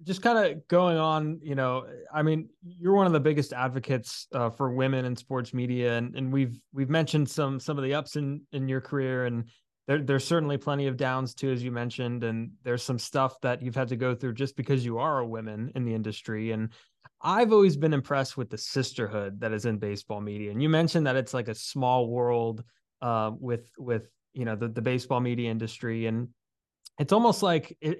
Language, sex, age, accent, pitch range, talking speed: English, male, 20-39, American, 120-155 Hz, 220 wpm